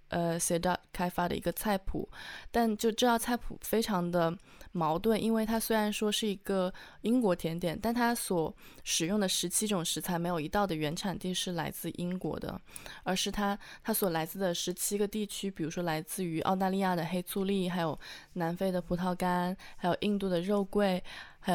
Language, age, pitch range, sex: Chinese, 20-39, 165-200 Hz, female